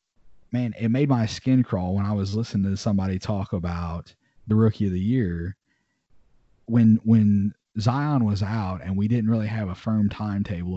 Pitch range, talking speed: 100-115 Hz, 180 wpm